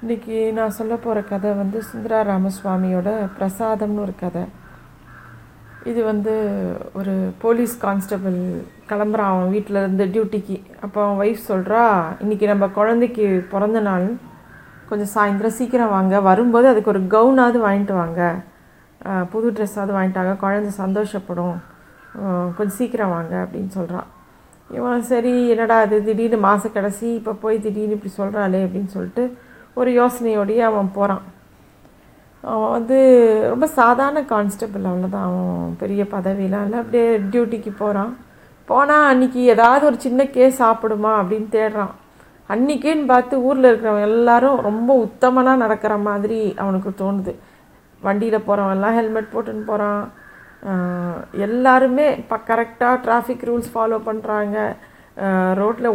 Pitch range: 195-235 Hz